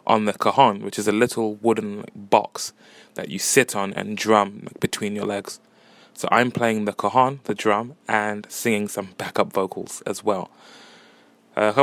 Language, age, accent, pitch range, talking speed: English, 20-39, British, 105-120 Hz, 165 wpm